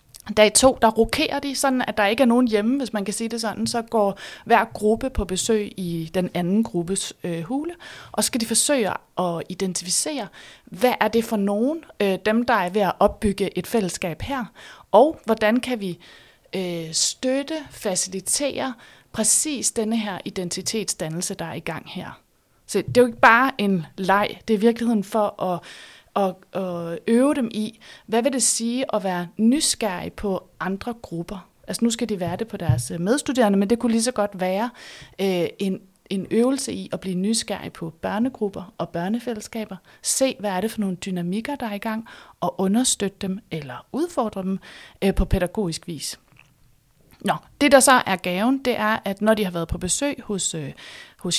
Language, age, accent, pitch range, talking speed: Danish, 30-49, native, 185-235 Hz, 185 wpm